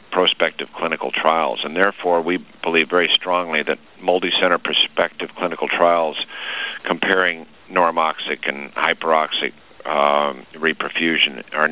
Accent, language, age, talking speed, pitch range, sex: American, English, 50-69, 115 wpm, 80-90 Hz, male